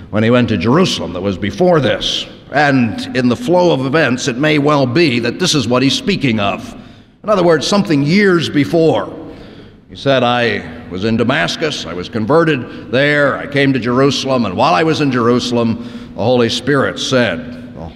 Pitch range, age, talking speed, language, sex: 105-135 Hz, 50-69, 190 wpm, English, male